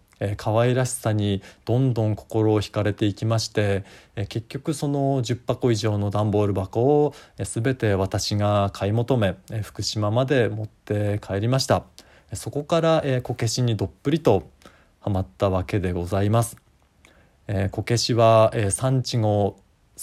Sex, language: male, Japanese